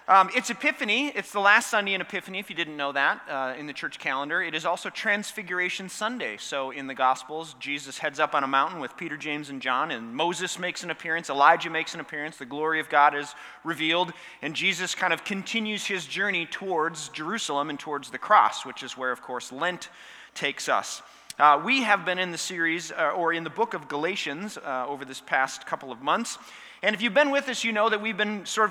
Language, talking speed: English, 225 wpm